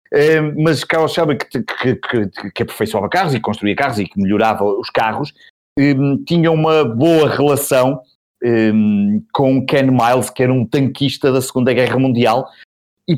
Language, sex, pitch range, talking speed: Portuguese, male, 110-145 Hz, 165 wpm